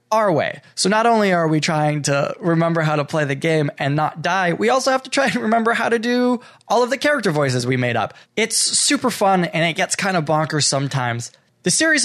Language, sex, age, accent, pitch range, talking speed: English, male, 20-39, American, 150-220 Hz, 240 wpm